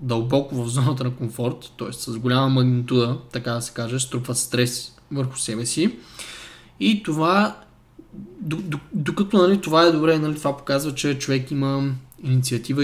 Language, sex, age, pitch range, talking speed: Bulgarian, male, 20-39, 125-160 Hz, 160 wpm